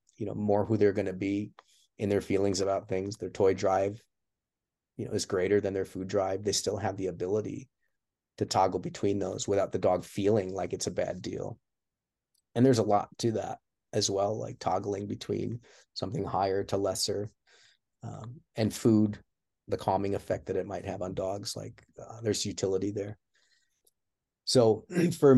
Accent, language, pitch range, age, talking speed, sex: American, English, 95-110 Hz, 30-49, 180 wpm, male